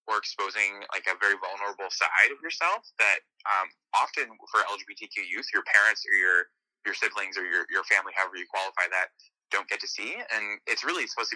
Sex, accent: male, American